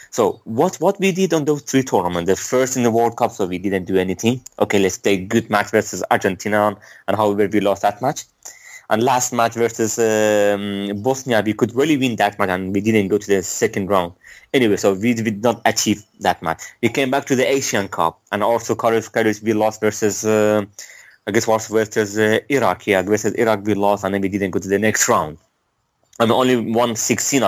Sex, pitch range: male, 105-125 Hz